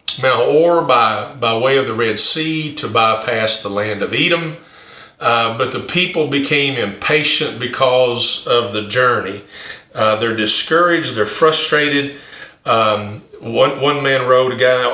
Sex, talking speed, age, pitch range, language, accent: male, 150 wpm, 50-69, 110-140 Hz, English, American